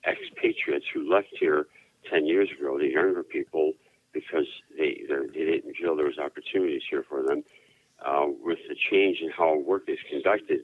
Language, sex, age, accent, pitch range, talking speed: English, male, 60-79, American, 360-390 Hz, 170 wpm